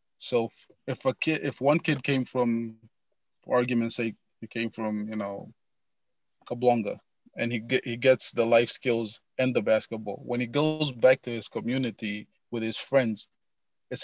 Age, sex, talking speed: 20-39, male, 170 wpm